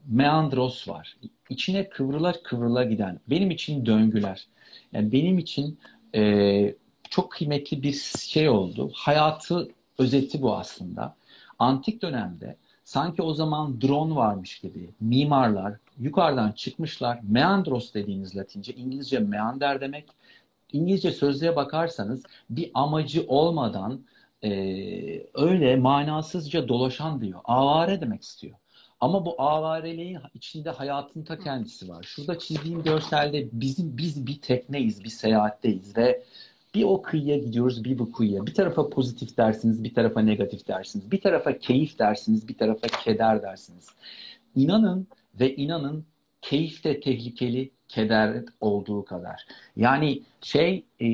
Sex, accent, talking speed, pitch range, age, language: male, native, 125 wpm, 115-160 Hz, 60-79, Turkish